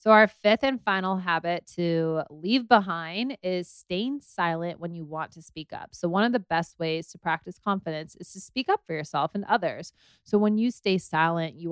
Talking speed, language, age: 210 wpm, English, 20-39